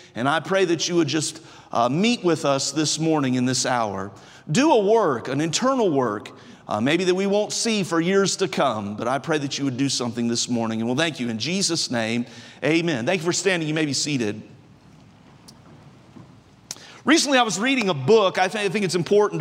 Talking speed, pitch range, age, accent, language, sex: 215 wpm, 165-215 Hz, 40-59, American, English, male